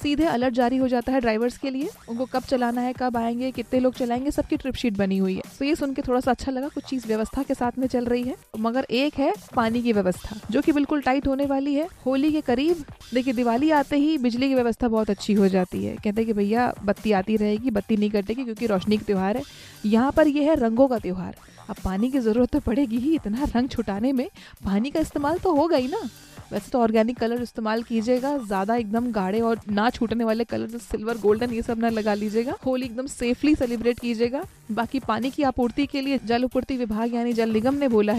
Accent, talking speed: native, 235 wpm